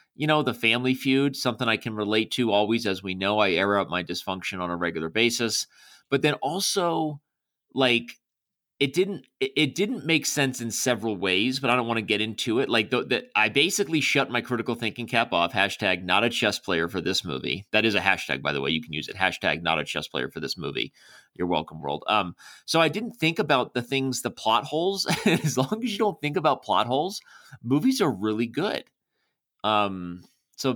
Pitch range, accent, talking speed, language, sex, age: 105-135 Hz, American, 215 wpm, English, male, 30-49